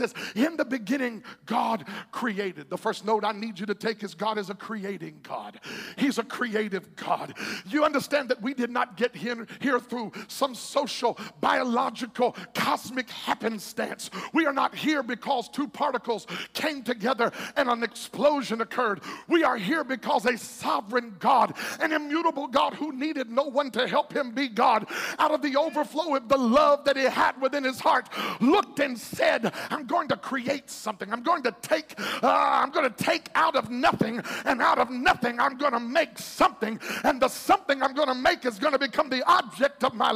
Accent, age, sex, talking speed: American, 50-69, male, 180 wpm